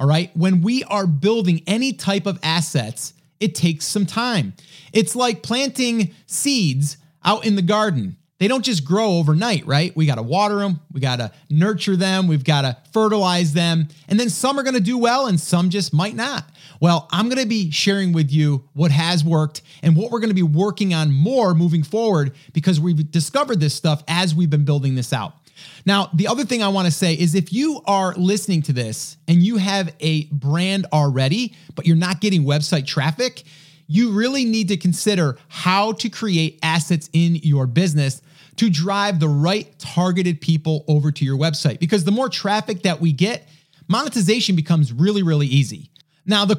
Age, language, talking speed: 30-49, English, 195 wpm